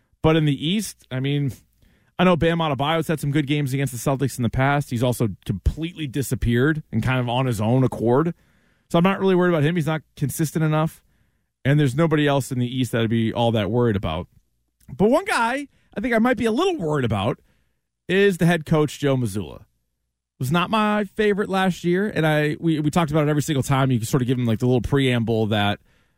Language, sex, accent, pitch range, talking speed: English, male, American, 125-175 Hz, 230 wpm